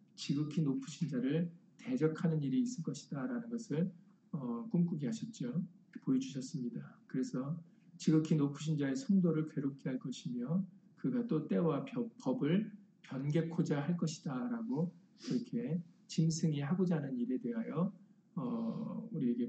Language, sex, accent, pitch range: Korean, male, native, 155-230 Hz